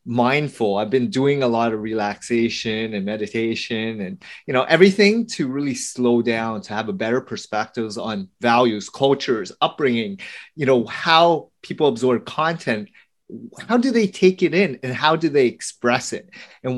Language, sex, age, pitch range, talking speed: English, male, 30-49, 120-180 Hz, 165 wpm